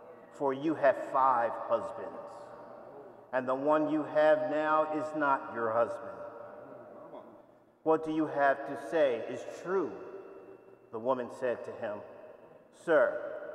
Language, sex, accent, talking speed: English, male, American, 130 wpm